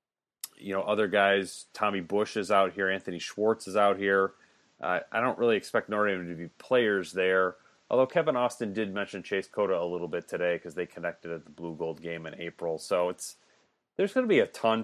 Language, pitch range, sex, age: English, 90-105 Hz, male, 30-49